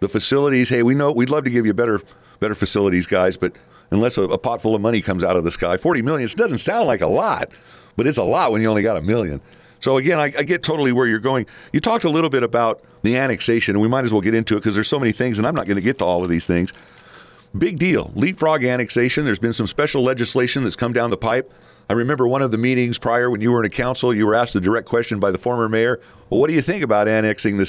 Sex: male